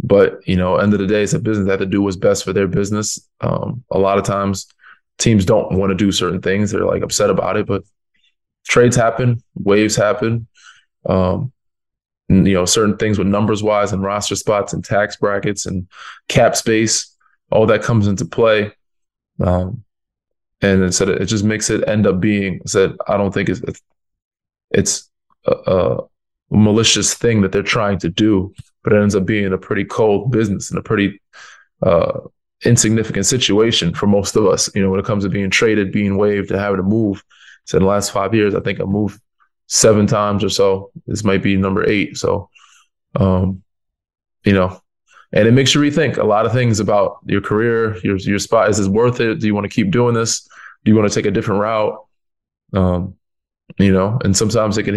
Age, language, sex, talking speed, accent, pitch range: 20-39, English, male, 205 wpm, American, 95-110 Hz